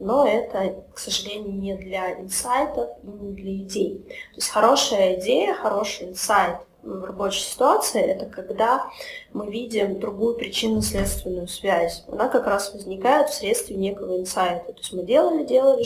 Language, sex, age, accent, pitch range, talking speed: Russian, female, 20-39, native, 190-245 Hz, 150 wpm